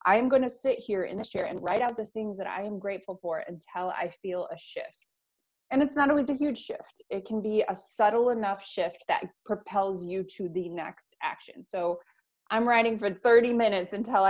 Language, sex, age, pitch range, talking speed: English, female, 20-39, 175-225 Hz, 220 wpm